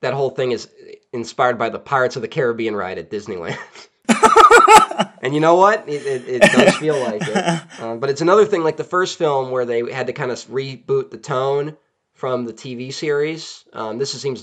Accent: American